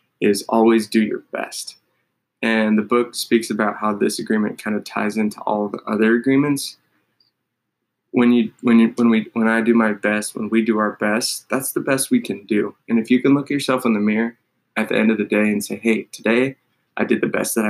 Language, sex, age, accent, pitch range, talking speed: English, male, 20-39, American, 105-120 Hz, 225 wpm